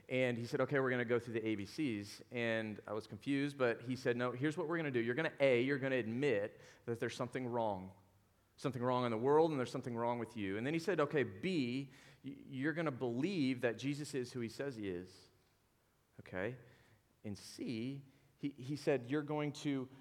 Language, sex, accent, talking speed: English, male, American, 225 wpm